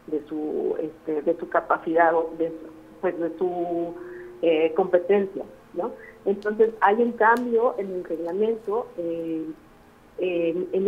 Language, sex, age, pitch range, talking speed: Spanish, female, 40-59, 170-215 Hz, 130 wpm